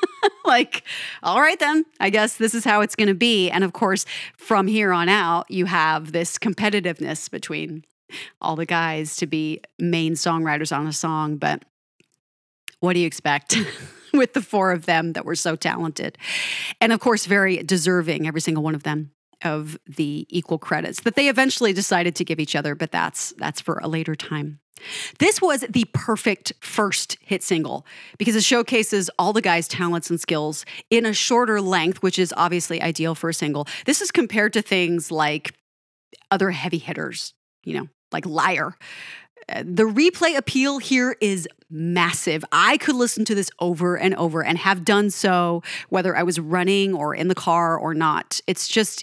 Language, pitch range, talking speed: English, 165-215 Hz, 180 wpm